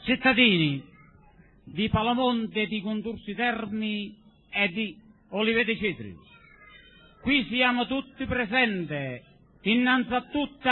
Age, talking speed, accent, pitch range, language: 50-69, 85 wpm, native, 240-295 Hz, Italian